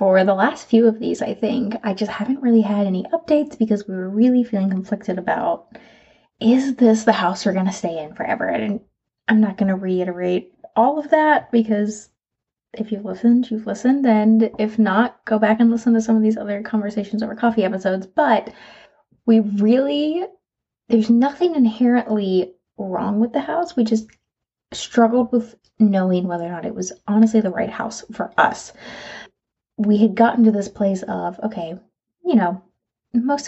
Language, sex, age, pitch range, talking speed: English, female, 20-39, 195-235 Hz, 180 wpm